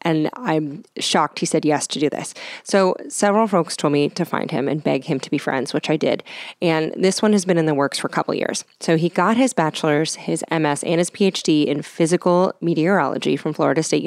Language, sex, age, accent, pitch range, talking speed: English, female, 30-49, American, 155-210 Hz, 230 wpm